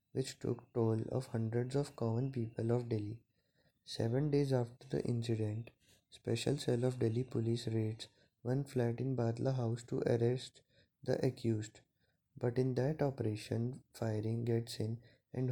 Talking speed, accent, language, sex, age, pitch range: 145 wpm, Indian, English, male, 20-39, 115-130 Hz